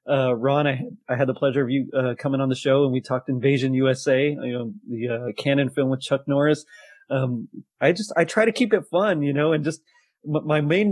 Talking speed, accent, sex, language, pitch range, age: 235 wpm, American, male, English, 130-160 Hz, 30-49